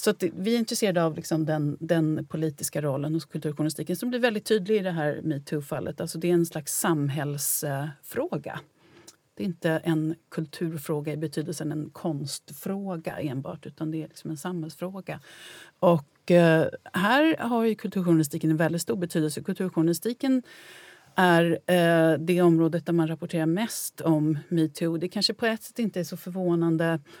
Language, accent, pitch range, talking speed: Swedish, native, 160-185 Hz, 155 wpm